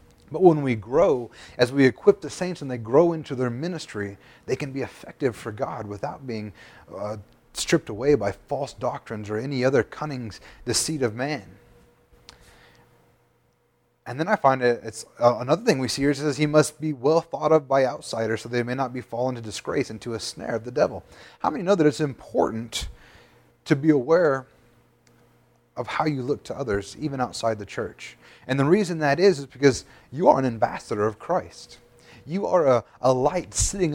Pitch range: 110-150 Hz